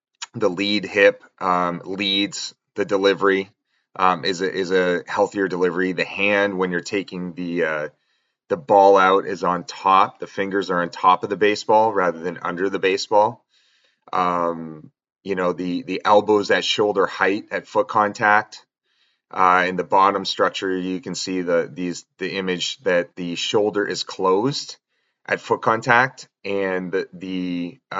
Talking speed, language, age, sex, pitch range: 160 wpm, English, 30-49, male, 90-105 Hz